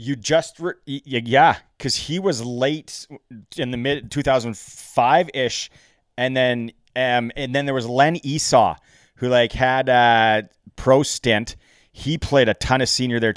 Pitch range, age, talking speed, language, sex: 105-135 Hz, 30-49, 160 wpm, English, male